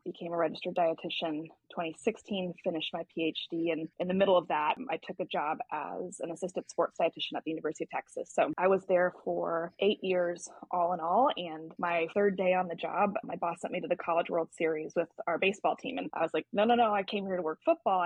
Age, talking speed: 20-39, 235 wpm